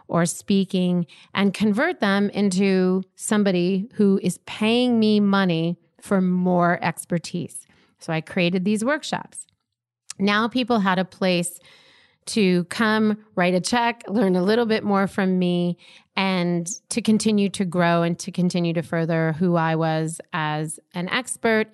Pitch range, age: 170-200 Hz, 30-49